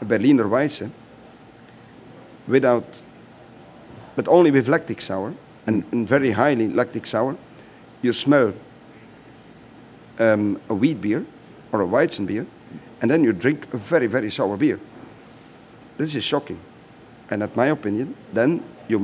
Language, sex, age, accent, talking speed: English, male, 50-69, Belgian, 135 wpm